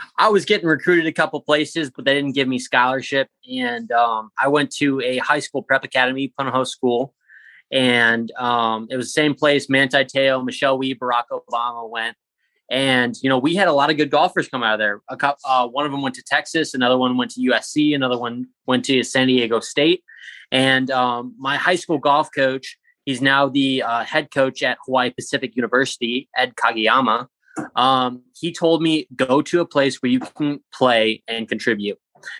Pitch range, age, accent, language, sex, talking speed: 125-150 Hz, 20-39, American, English, male, 200 wpm